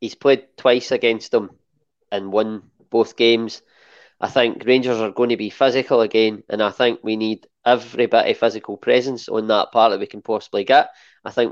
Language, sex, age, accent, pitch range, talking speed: English, male, 20-39, British, 110-175 Hz, 200 wpm